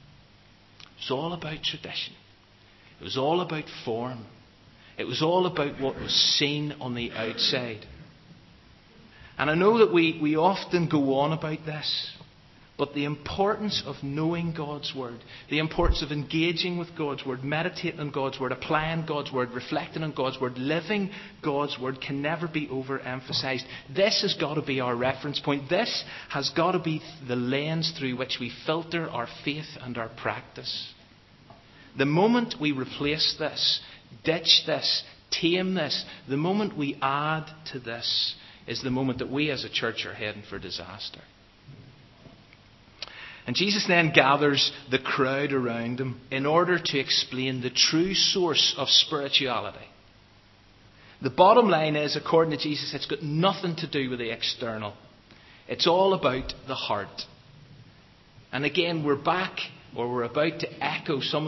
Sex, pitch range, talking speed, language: male, 125-160 Hz, 155 wpm, English